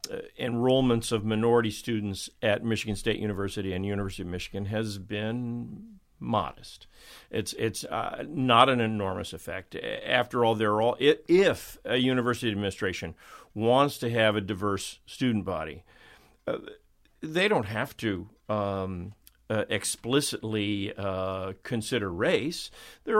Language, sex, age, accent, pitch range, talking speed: English, male, 50-69, American, 105-125 Hz, 130 wpm